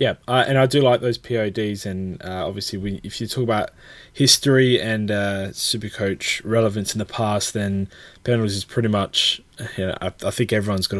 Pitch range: 100-125 Hz